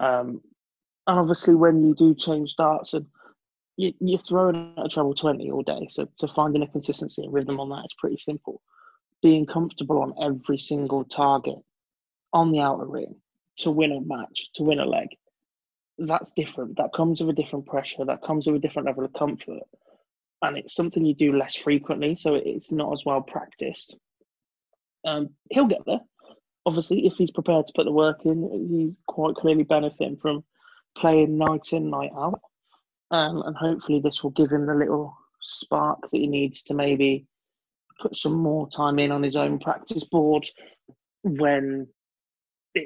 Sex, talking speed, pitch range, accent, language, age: male, 180 wpm, 140-160 Hz, British, English, 20-39